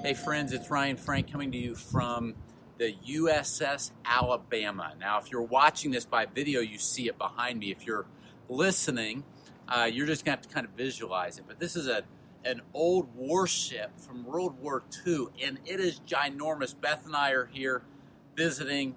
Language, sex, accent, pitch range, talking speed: English, male, American, 125-155 Hz, 185 wpm